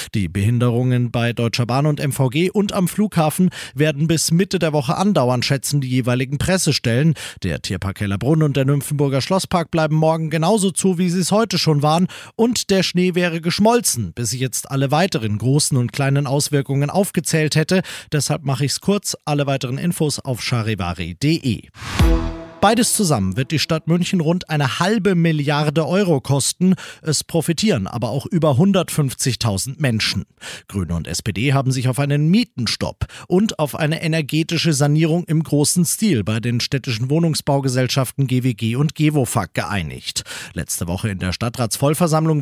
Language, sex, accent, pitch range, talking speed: German, male, German, 125-170 Hz, 155 wpm